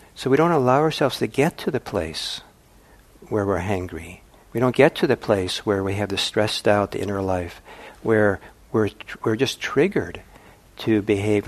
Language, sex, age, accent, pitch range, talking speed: English, male, 60-79, American, 95-115 Hz, 185 wpm